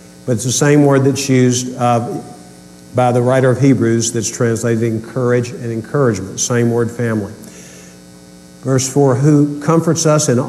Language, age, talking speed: English, 50-69, 155 wpm